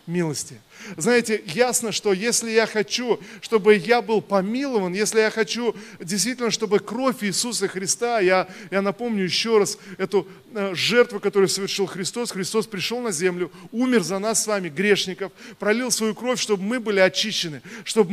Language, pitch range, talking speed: Russian, 180-215 Hz, 155 wpm